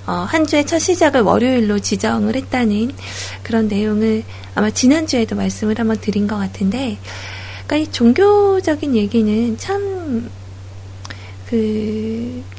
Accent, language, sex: native, Korean, female